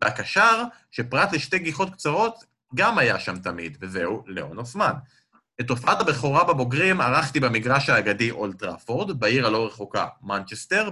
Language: Hebrew